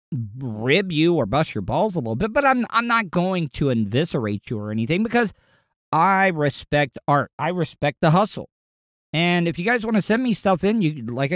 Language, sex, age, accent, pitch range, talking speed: English, male, 50-69, American, 130-175 Hz, 205 wpm